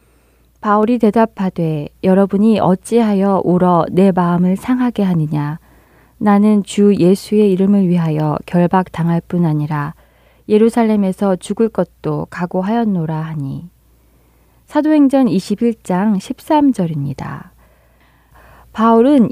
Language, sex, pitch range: Korean, female, 160-225 Hz